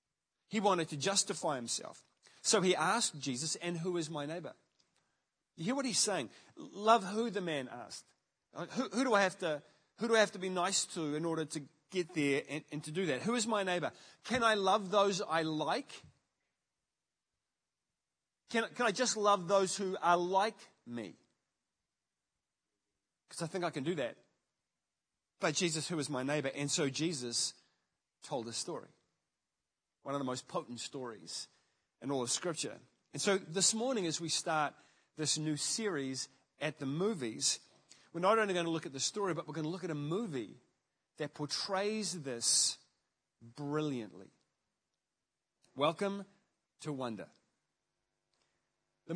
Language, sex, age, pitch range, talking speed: English, male, 30-49, 145-200 Hz, 165 wpm